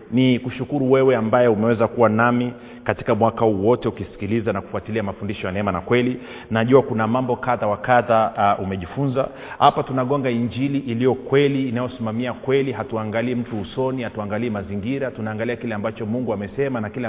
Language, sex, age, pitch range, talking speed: Swahili, male, 40-59, 110-130 Hz, 155 wpm